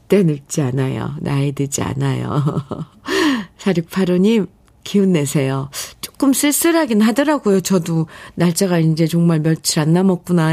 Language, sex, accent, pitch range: Korean, female, native, 155-205 Hz